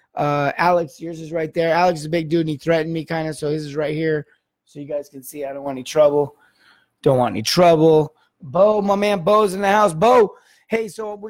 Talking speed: 250 wpm